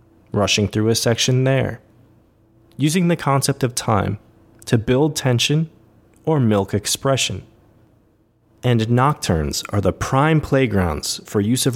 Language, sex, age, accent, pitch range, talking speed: English, male, 20-39, American, 105-125 Hz, 130 wpm